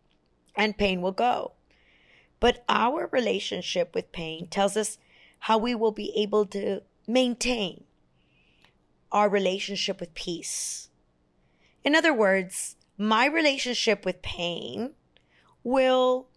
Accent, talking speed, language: American, 110 wpm, English